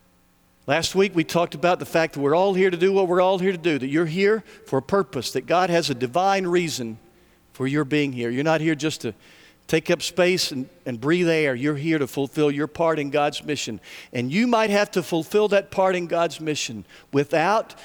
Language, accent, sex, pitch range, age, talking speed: English, American, male, 150-200 Hz, 50-69, 230 wpm